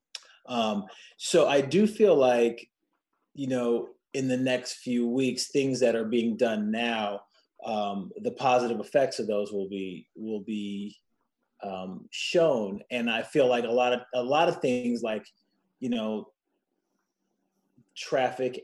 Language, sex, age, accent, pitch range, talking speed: English, male, 30-49, American, 110-135 Hz, 150 wpm